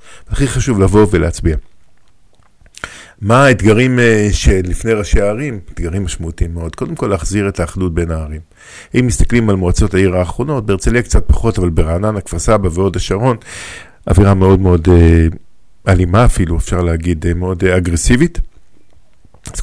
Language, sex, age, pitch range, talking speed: Hebrew, male, 50-69, 90-115 Hz, 140 wpm